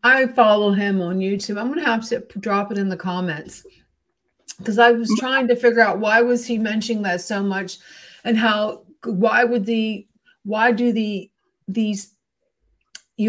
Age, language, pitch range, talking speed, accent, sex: 50-69, English, 190-230 Hz, 170 wpm, American, female